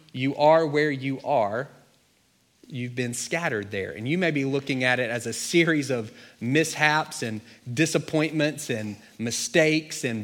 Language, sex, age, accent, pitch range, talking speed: English, male, 30-49, American, 115-145 Hz, 150 wpm